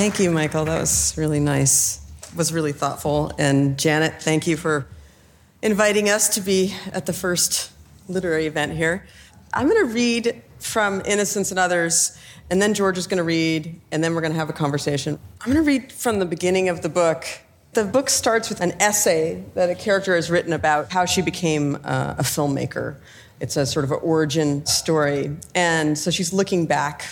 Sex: female